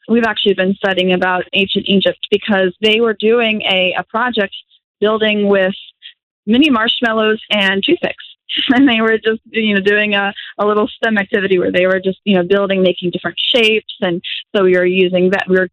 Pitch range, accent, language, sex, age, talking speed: 185-225 Hz, American, English, female, 20-39, 190 wpm